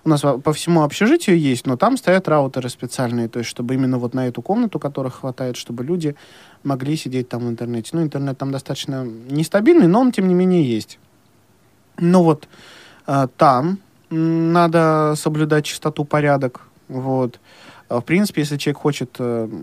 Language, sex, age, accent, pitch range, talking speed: Russian, male, 20-39, native, 130-165 Hz, 160 wpm